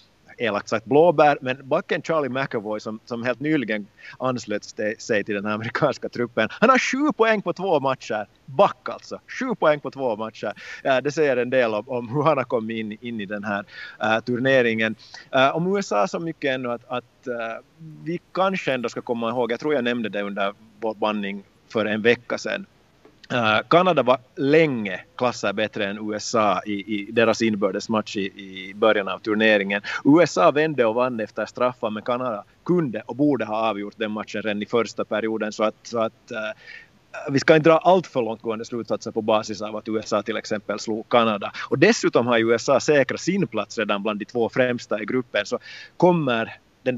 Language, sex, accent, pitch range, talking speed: Swedish, male, Finnish, 105-135 Hz, 190 wpm